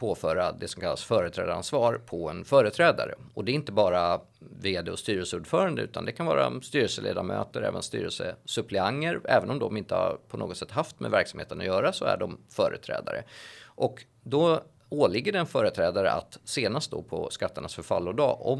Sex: male